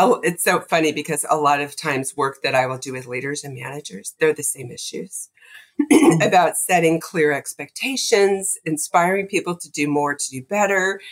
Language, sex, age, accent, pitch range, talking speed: English, female, 40-59, American, 135-170 Hz, 180 wpm